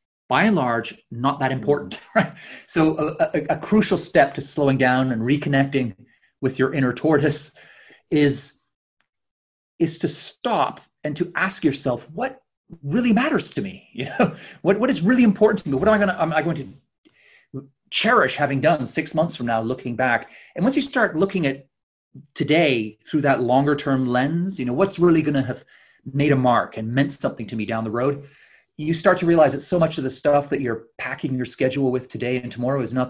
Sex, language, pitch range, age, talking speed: male, English, 130-170 Hz, 30-49, 200 wpm